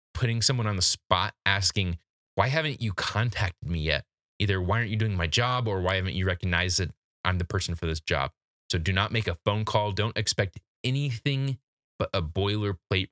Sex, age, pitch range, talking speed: male, 20-39, 90-110 Hz, 200 wpm